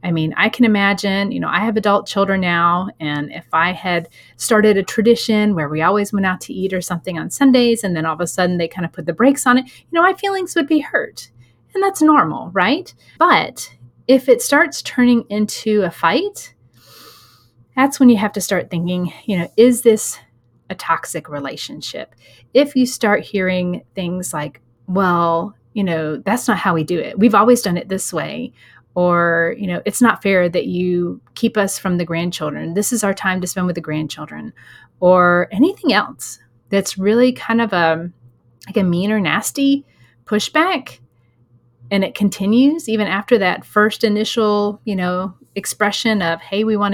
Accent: American